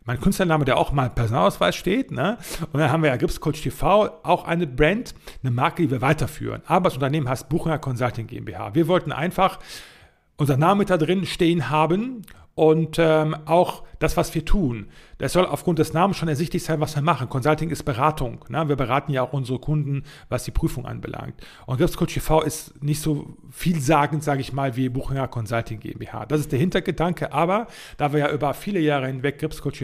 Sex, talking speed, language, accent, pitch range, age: male, 195 wpm, German, German, 130-165 Hz, 40-59